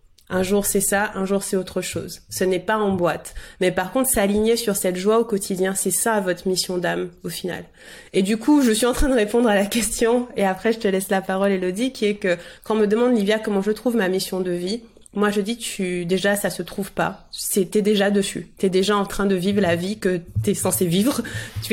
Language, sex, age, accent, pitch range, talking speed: French, female, 30-49, French, 190-225 Hz, 255 wpm